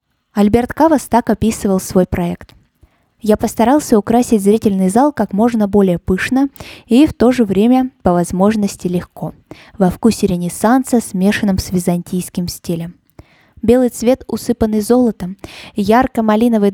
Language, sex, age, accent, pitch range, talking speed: Russian, female, 20-39, native, 180-225 Hz, 125 wpm